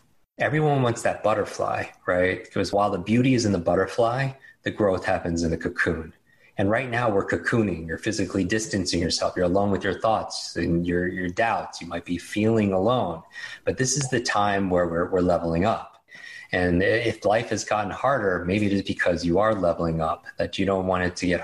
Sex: male